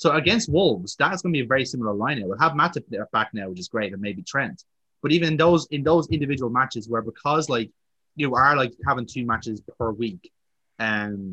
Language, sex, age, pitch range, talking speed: English, male, 20-39, 110-140 Hz, 230 wpm